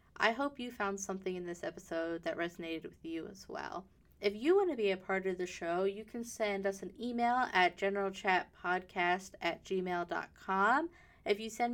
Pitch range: 185-235 Hz